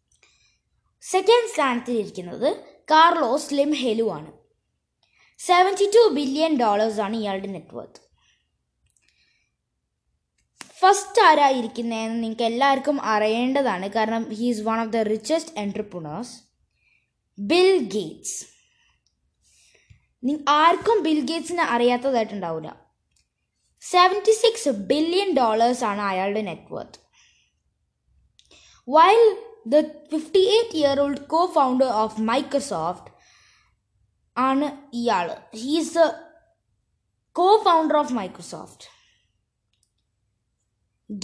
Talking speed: 65 wpm